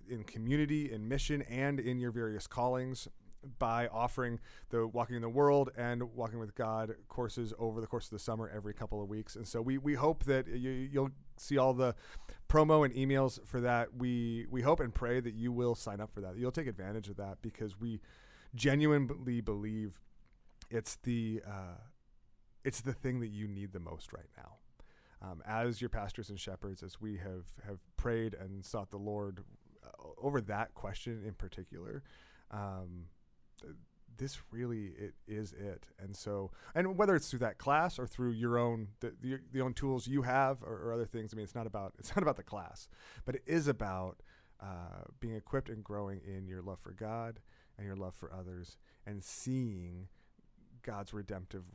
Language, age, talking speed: English, 30-49, 190 wpm